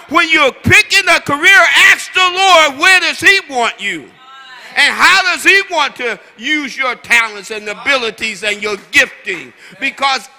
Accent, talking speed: American, 160 wpm